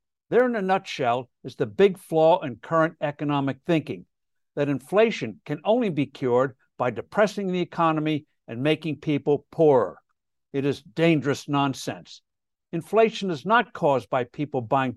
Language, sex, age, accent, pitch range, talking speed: English, male, 60-79, American, 140-190 Hz, 150 wpm